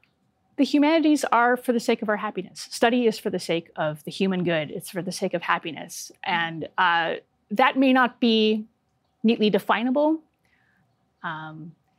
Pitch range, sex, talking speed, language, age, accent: 180-235 Hz, female, 165 wpm, English, 30-49, American